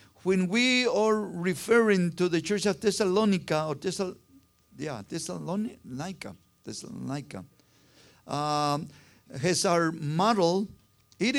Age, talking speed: 50-69, 90 wpm